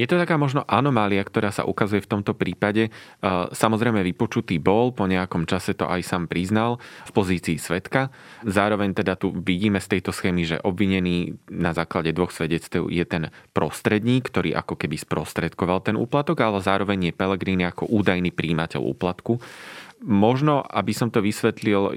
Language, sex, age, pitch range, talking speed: Slovak, male, 30-49, 85-105 Hz, 160 wpm